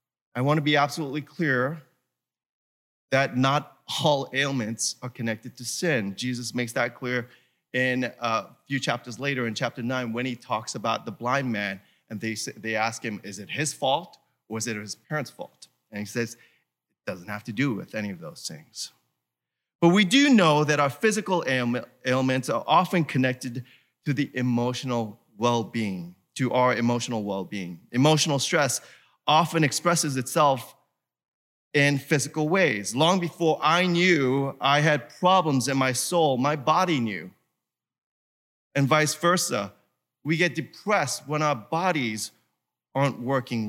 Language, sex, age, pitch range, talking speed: English, male, 30-49, 115-155 Hz, 155 wpm